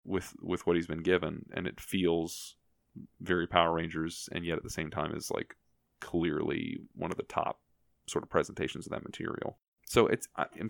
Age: 20-39